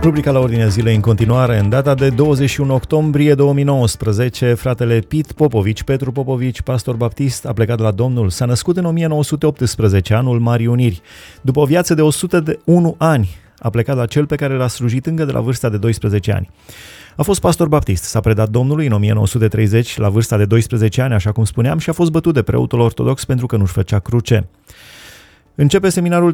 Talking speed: 185 wpm